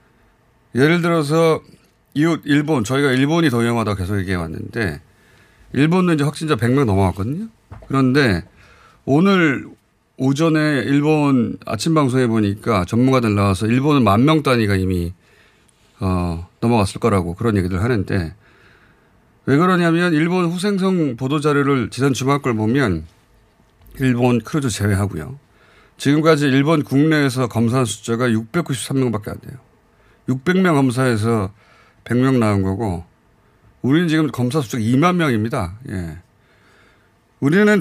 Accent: native